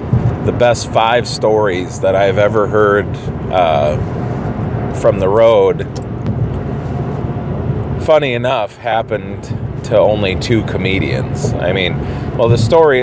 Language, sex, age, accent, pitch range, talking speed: English, male, 30-49, American, 105-125 Hz, 110 wpm